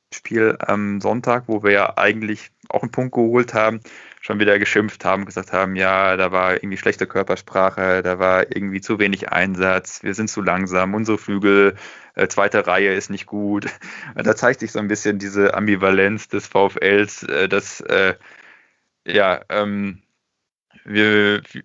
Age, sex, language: 20-39, male, German